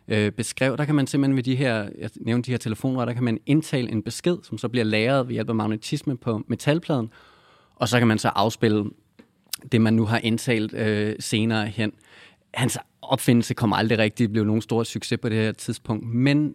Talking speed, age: 215 wpm, 30-49